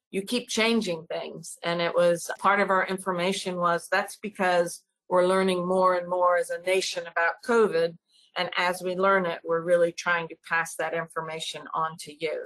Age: 50-69